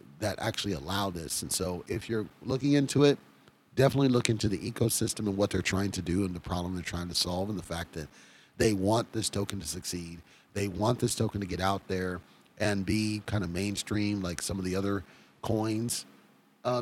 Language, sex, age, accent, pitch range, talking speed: English, male, 30-49, American, 95-115 Hz, 210 wpm